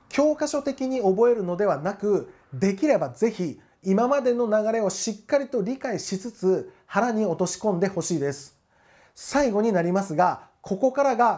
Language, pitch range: Japanese, 175-255 Hz